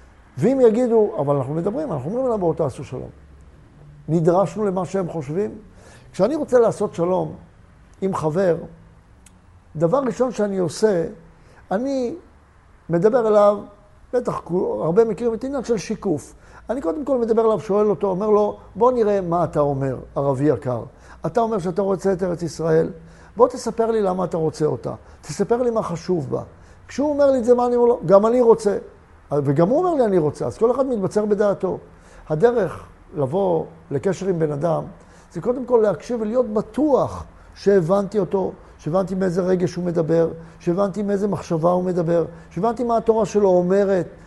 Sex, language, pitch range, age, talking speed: male, Hebrew, 165-225 Hz, 60-79, 160 wpm